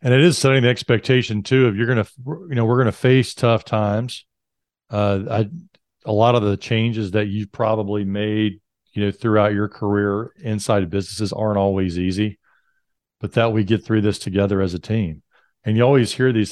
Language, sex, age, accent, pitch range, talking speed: English, male, 40-59, American, 100-115 Hz, 205 wpm